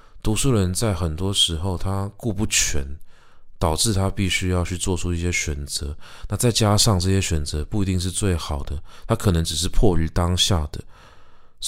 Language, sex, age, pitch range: Chinese, male, 20-39, 80-100 Hz